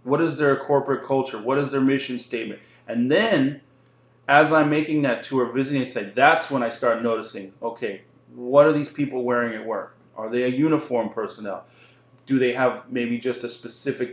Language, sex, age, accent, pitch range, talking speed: English, male, 40-59, American, 120-140 Hz, 185 wpm